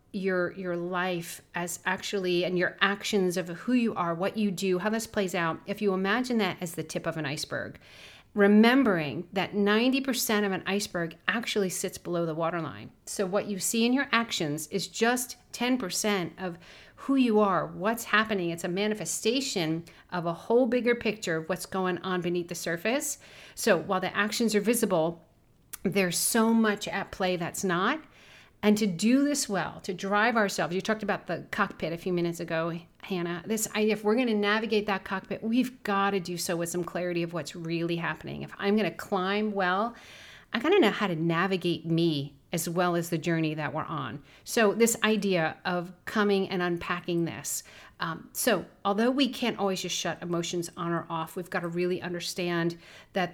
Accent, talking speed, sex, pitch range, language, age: American, 190 wpm, female, 170-210 Hz, English, 40-59